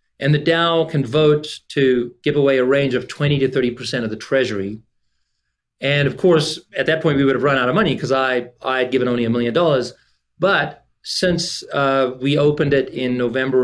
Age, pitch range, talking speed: 40-59, 120-145 Hz, 200 wpm